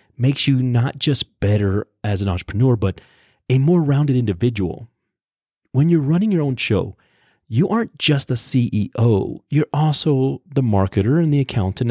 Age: 30-49